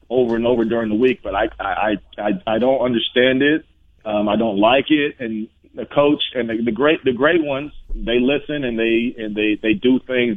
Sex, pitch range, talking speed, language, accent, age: male, 105-130 Hz, 220 wpm, English, American, 40-59